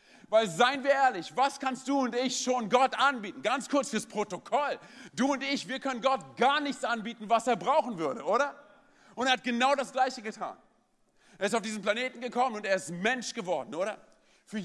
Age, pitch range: 40-59, 165-235 Hz